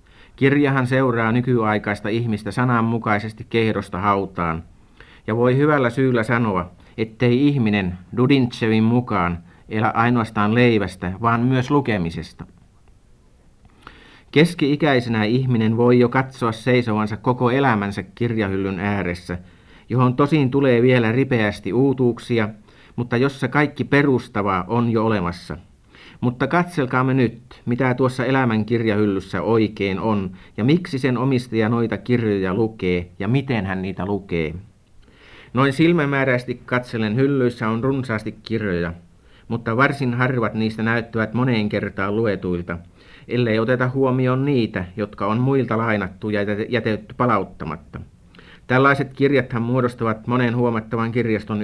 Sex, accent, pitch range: male, native, 100-125 Hz